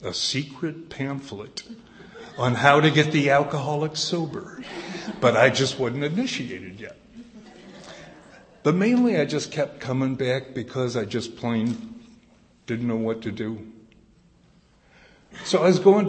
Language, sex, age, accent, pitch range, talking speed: English, male, 60-79, American, 130-195 Hz, 135 wpm